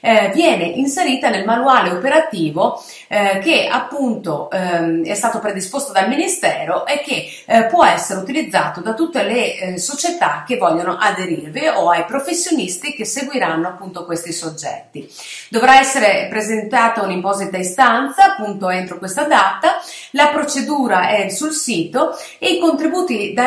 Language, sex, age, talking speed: Italian, female, 30-49, 140 wpm